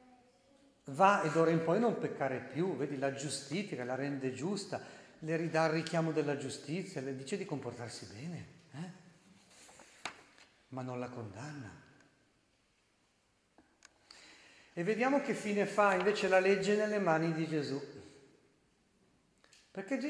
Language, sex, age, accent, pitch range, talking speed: Italian, male, 50-69, native, 145-200 Hz, 130 wpm